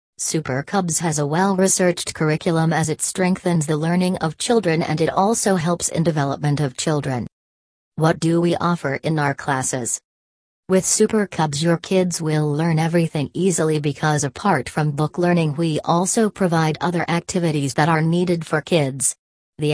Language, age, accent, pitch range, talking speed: English, 40-59, American, 145-175 Hz, 160 wpm